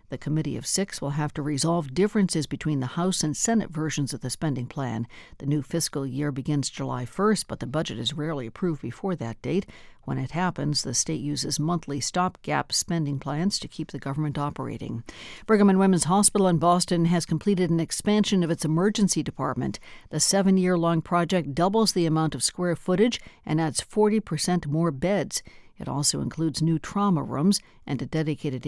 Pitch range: 145-180 Hz